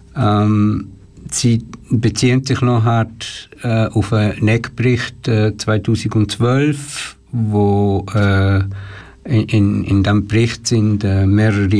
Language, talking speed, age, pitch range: German, 105 wpm, 60-79, 105-130 Hz